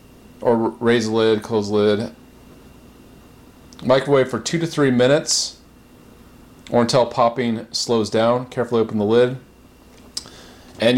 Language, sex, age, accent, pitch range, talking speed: English, male, 30-49, American, 115-135 Hz, 125 wpm